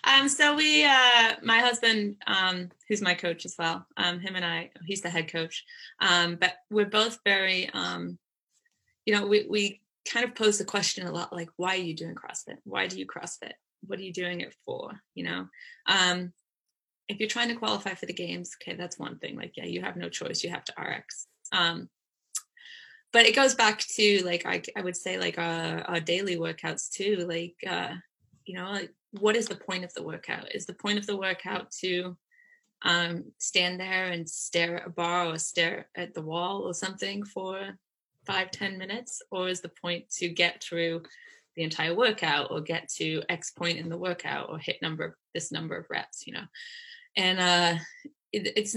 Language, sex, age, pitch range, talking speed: English, female, 20-39, 175-215 Hz, 200 wpm